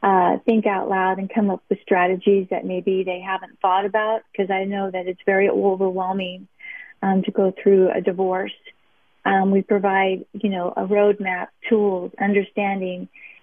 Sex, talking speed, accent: female, 165 wpm, American